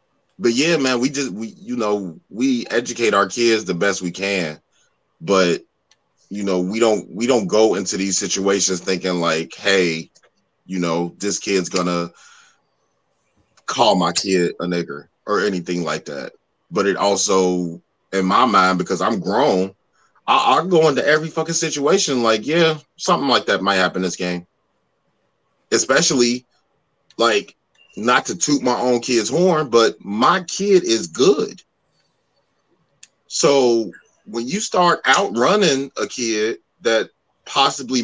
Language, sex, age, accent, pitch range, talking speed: English, male, 30-49, American, 95-130 Hz, 145 wpm